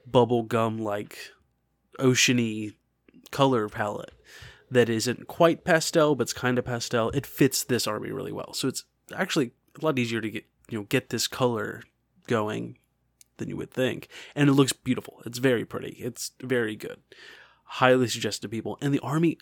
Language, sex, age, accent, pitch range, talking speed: English, male, 20-39, American, 115-140 Hz, 175 wpm